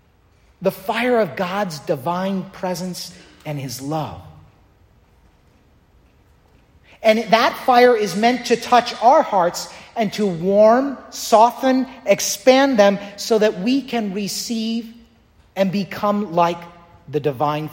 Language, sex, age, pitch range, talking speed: English, male, 40-59, 165-230 Hz, 115 wpm